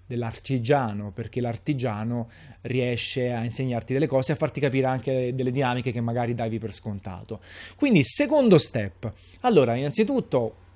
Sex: male